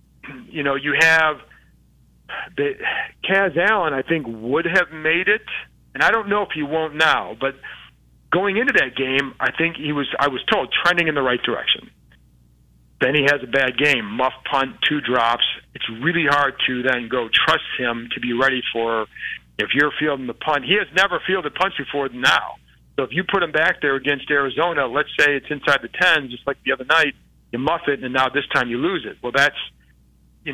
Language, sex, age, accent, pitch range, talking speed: English, male, 40-59, American, 125-160 Hz, 205 wpm